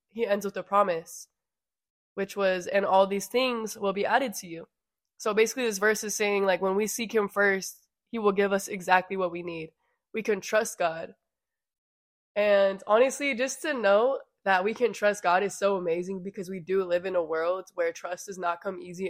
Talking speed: 205 wpm